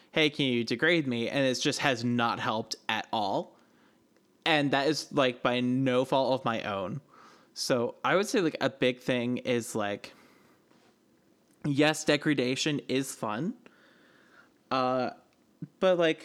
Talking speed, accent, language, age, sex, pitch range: 150 wpm, American, English, 20-39, male, 125-155 Hz